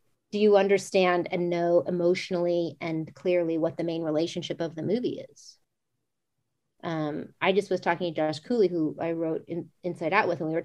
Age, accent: 30-49, American